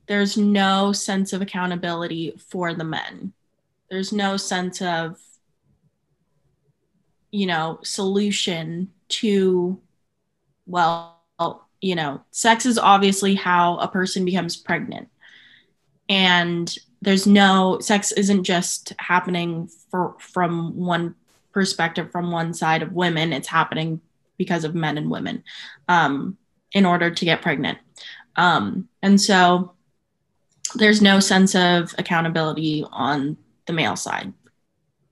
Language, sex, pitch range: English, female, 170-200 Hz